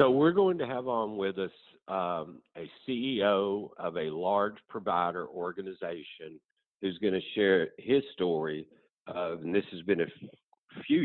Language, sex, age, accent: English, male, 50-69, American